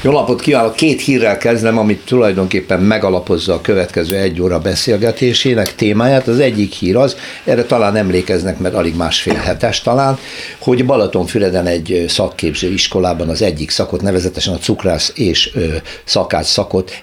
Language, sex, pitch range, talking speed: Hungarian, male, 95-130 Hz, 145 wpm